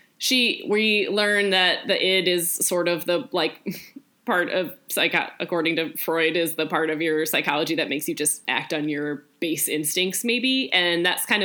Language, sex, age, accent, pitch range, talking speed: English, female, 10-29, American, 155-195 Hz, 190 wpm